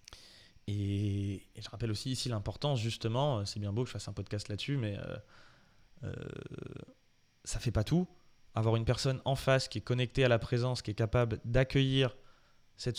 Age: 20-39